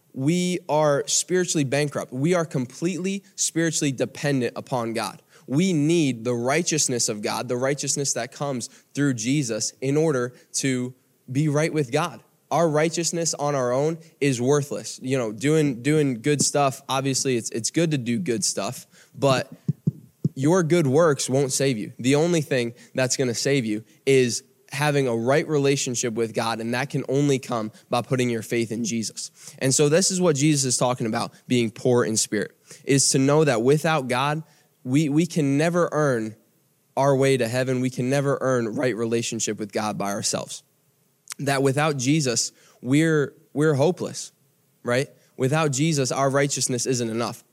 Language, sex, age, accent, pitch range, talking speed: English, male, 20-39, American, 125-150 Hz, 170 wpm